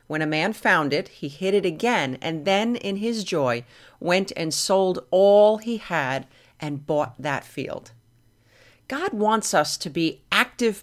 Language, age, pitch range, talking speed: English, 40-59, 155-235 Hz, 165 wpm